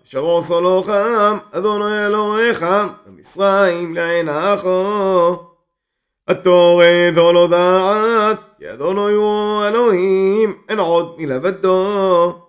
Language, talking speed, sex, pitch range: Hebrew, 85 wpm, male, 175-205 Hz